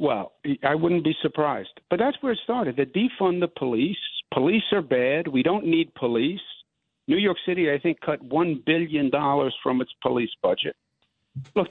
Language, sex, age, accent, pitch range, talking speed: English, male, 60-79, American, 155-200 Hz, 175 wpm